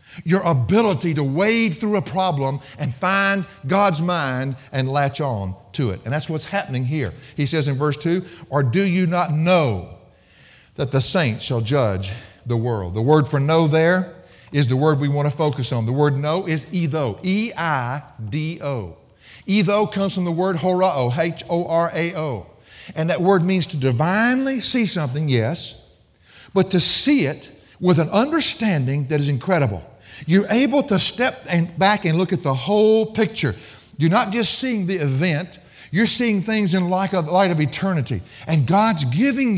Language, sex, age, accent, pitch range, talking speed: English, male, 50-69, American, 140-195 Hz, 165 wpm